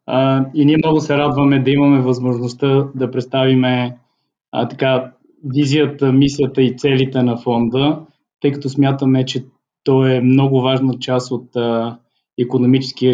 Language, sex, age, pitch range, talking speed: Bulgarian, male, 20-39, 125-145 Hz, 135 wpm